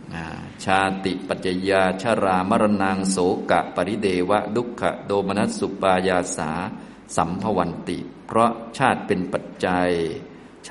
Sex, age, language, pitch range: male, 20-39, Thai, 90-105 Hz